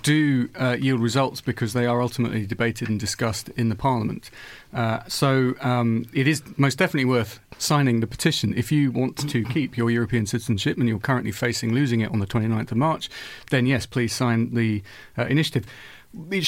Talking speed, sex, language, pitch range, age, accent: 190 wpm, male, English, 115-130 Hz, 40-59, British